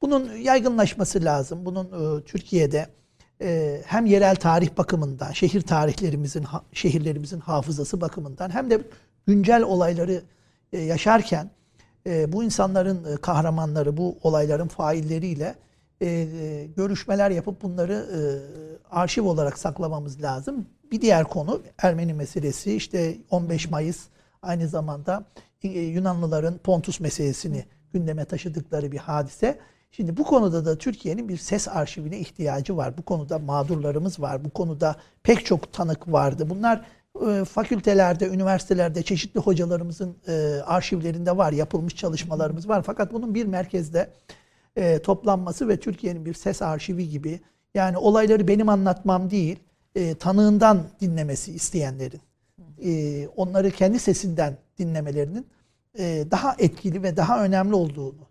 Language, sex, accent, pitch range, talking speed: Turkish, male, native, 155-195 Hz, 115 wpm